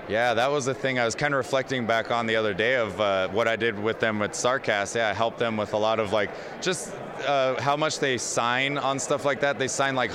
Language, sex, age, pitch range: English, male, 20-39, 115-135 Hz